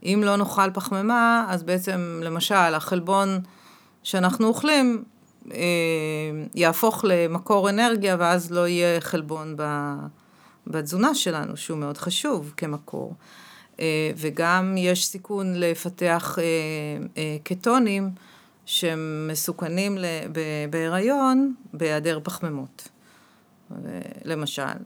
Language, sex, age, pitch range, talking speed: Hebrew, female, 40-59, 160-200 Hz, 95 wpm